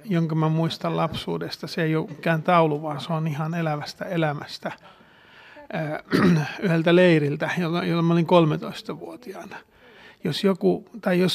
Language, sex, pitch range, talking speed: Finnish, male, 160-185 Hz, 135 wpm